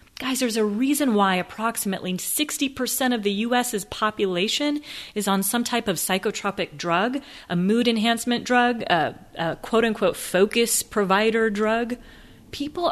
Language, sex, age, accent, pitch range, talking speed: English, female, 30-49, American, 190-250 Hz, 135 wpm